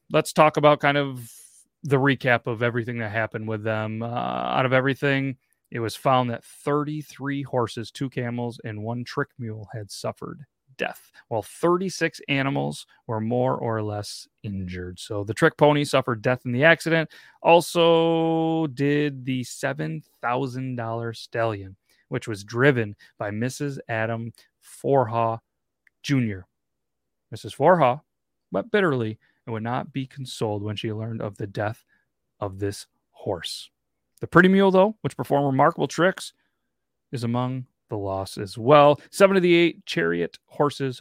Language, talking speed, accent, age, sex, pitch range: English, 145 wpm, American, 30-49, male, 115-145 Hz